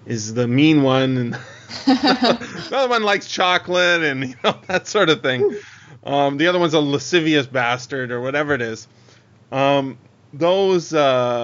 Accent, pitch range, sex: American, 115-160 Hz, male